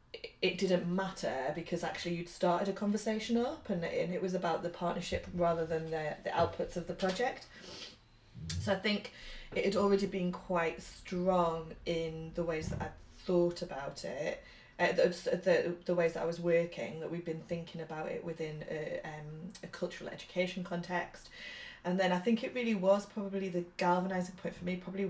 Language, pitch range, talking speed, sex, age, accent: English, 170-190 Hz, 185 wpm, female, 20-39, British